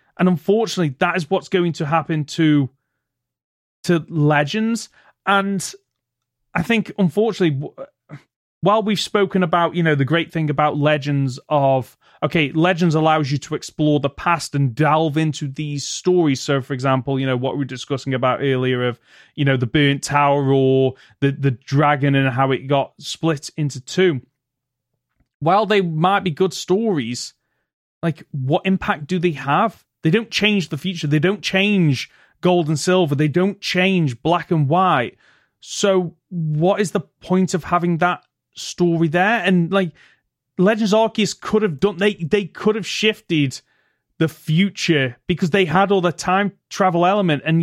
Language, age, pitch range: English, 30-49, 140-190 Hz